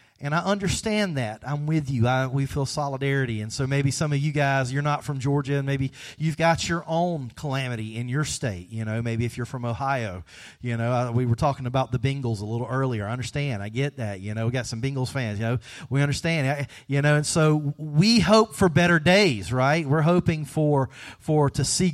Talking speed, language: 230 wpm, English